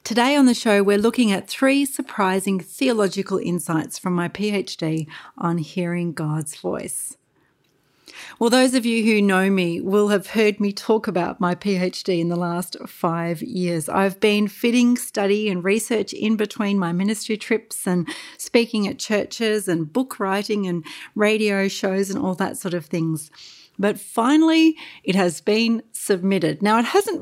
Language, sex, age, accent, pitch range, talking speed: English, female, 40-59, Australian, 180-225 Hz, 165 wpm